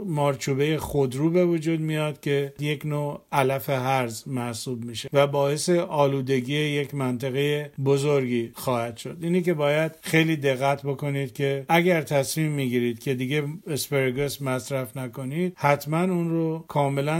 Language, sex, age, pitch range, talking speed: Persian, male, 50-69, 130-155 Hz, 135 wpm